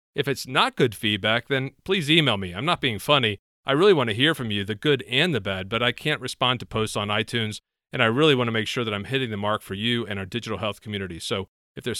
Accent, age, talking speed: American, 40-59, 275 wpm